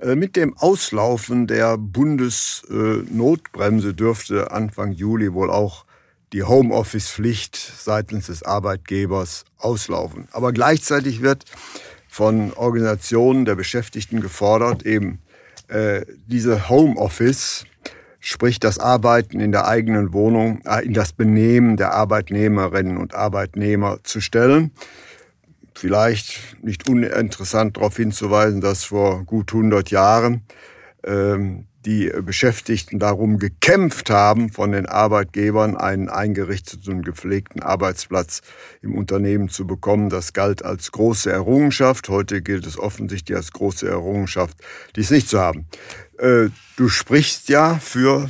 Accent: German